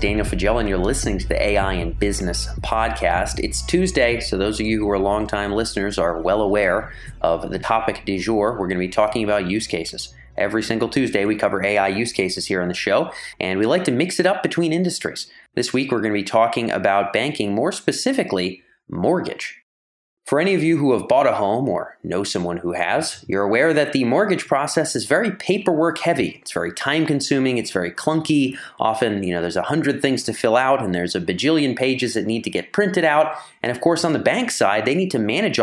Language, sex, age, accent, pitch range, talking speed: English, male, 30-49, American, 95-135 Hz, 220 wpm